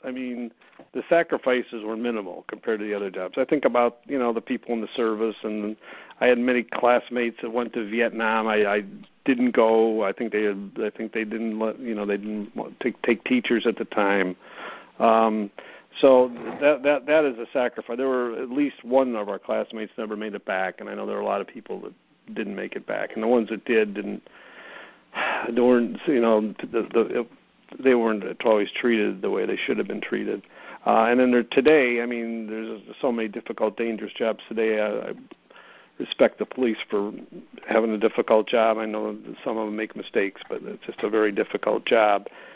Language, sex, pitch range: English, male, 105-120 Hz